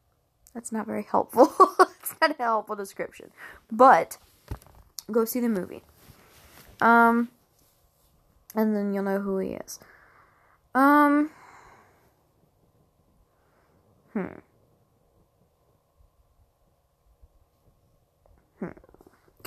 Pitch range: 190-235 Hz